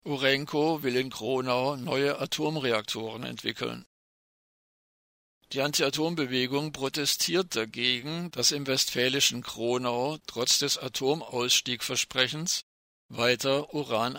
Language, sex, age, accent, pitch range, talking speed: German, male, 50-69, German, 115-140 Hz, 90 wpm